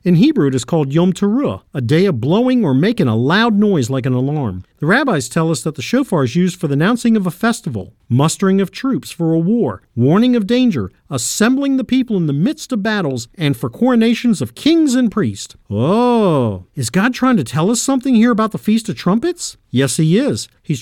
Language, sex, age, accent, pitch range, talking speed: English, male, 50-69, American, 140-230 Hz, 220 wpm